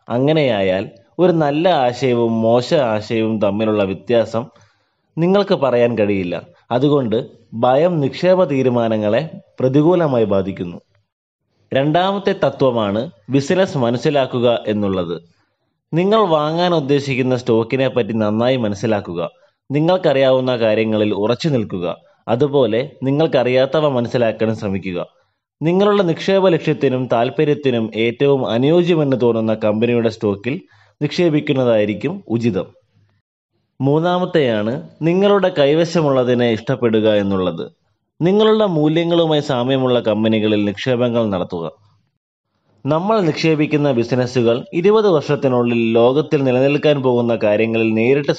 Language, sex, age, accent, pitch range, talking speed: Malayalam, male, 20-39, native, 110-150 Hz, 85 wpm